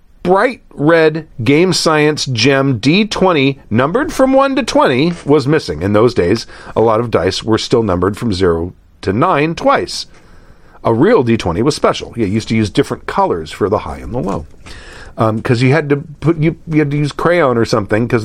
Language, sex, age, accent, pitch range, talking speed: English, male, 50-69, American, 110-165 Hz, 200 wpm